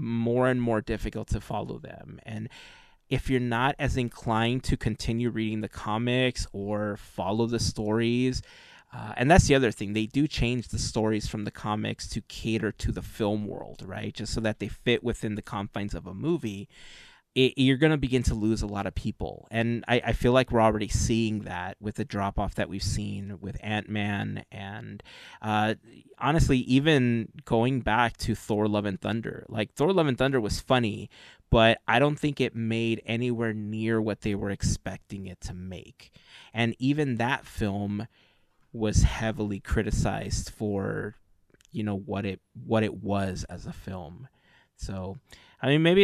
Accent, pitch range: American, 105-120 Hz